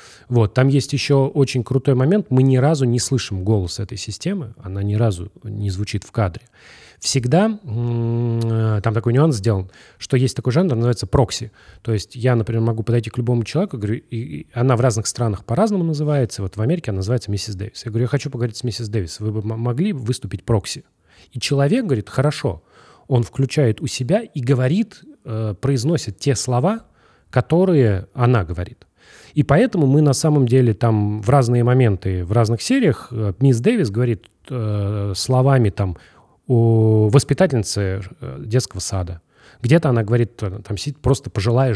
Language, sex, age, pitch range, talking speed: Russian, male, 30-49, 105-135 Hz, 165 wpm